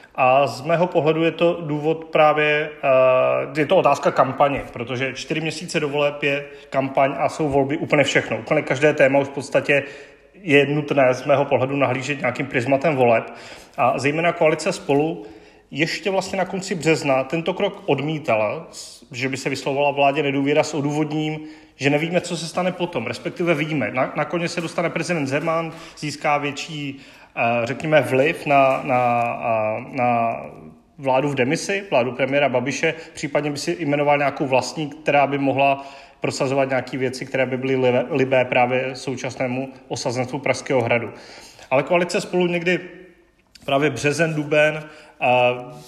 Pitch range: 135-165 Hz